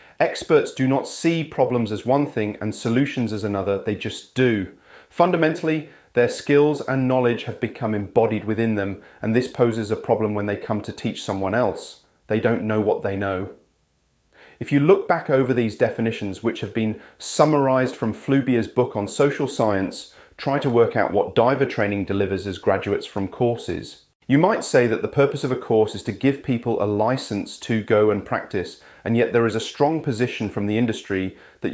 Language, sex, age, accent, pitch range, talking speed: English, male, 30-49, British, 110-135 Hz, 195 wpm